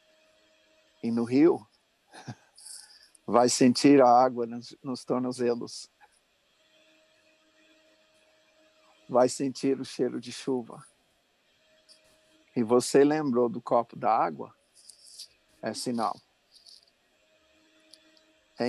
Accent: Brazilian